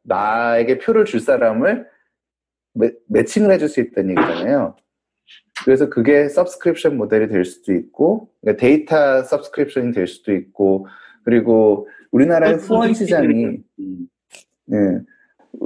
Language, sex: Korean, male